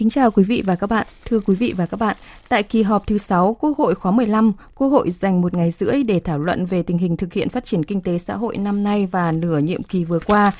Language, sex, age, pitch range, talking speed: Vietnamese, female, 20-39, 180-235 Hz, 285 wpm